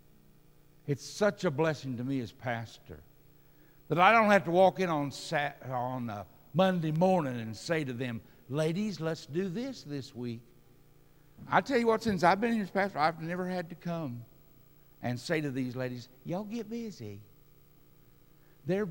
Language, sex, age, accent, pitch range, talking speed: English, male, 60-79, American, 145-190 Hz, 175 wpm